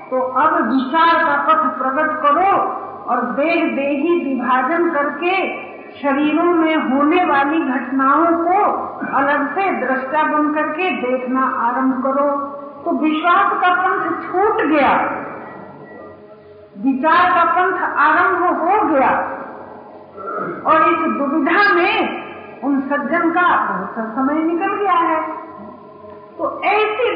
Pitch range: 290-345 Hz